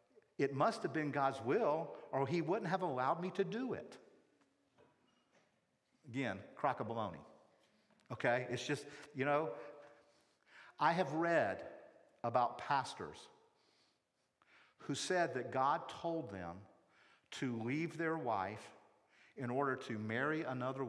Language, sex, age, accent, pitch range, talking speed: English, male, 50-69, American, 125-190 Hz, 125 wpm